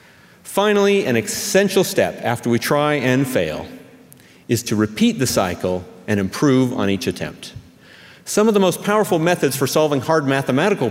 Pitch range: 115-165 Hz